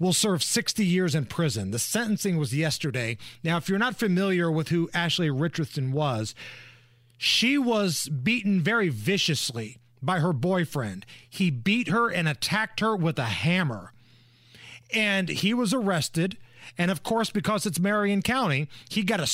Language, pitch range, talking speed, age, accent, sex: English, 140-200 Hz, 160 wpm, 40-59, American, male